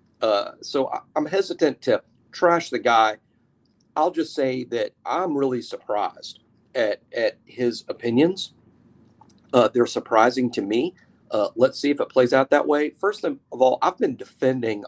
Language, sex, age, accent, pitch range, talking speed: English, male, 40-59, American, 125-160 Hz, 155 wpm